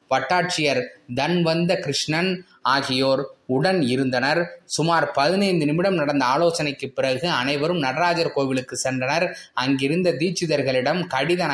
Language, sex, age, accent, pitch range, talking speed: Tamil, male, 20-39, native, 135-170 Hz, 85 wpm